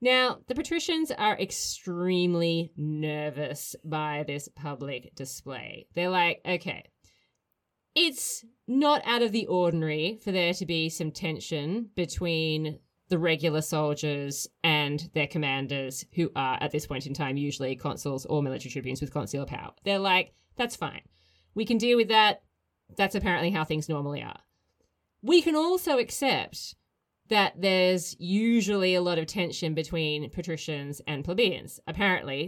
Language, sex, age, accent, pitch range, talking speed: English, female, 30-49, Australian, 150-205 Hz, 145 wpm